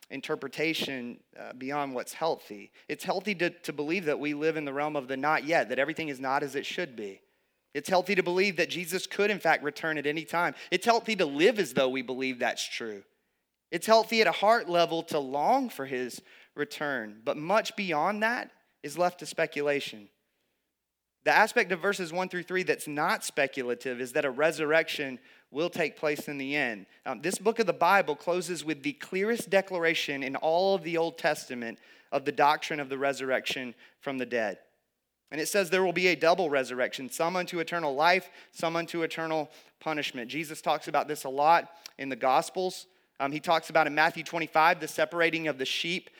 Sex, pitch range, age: male, 145-175 Hz, 30-49